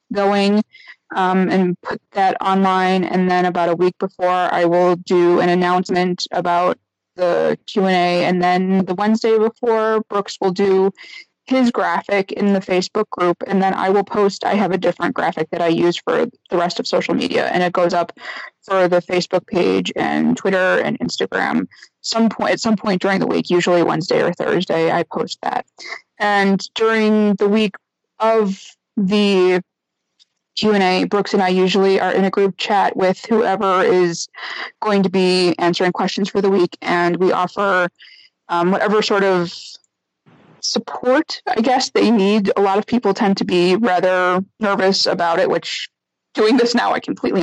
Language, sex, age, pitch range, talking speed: English, female, 20-39, 180-215 Hz, 175 wpm